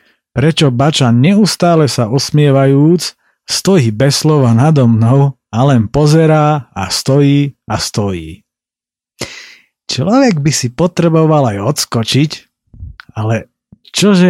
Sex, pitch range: male, 115-150 Hz